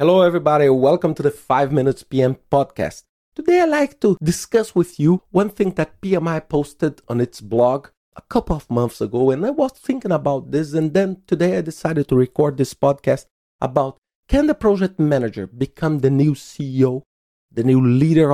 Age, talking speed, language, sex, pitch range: 40-59, 185 wpm, English, male, 110-155 Hz